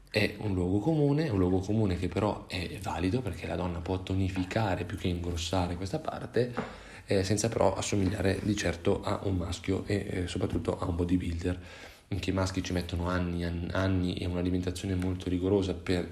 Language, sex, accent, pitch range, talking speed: Italian, male, native, 90-105 Hz, 185 wpm